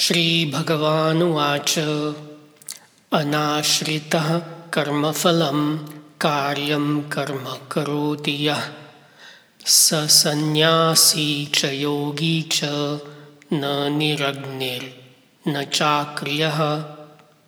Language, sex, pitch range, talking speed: English, male, 145-170 Hz, 50 wpm